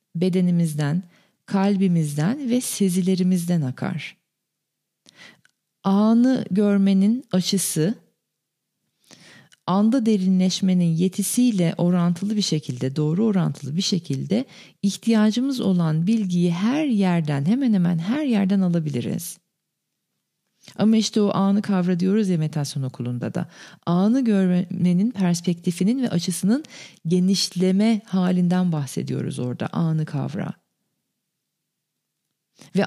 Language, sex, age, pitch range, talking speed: Turkish, female, 40-59, 175-210 Hz, 90 wpm